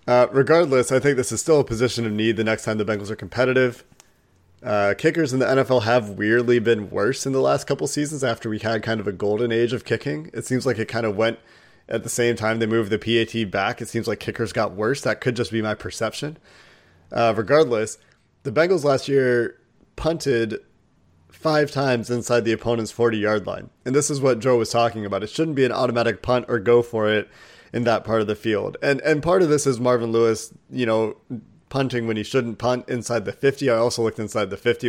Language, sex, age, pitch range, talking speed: English, male, 30-49, 110-125 Hz, 225 wpm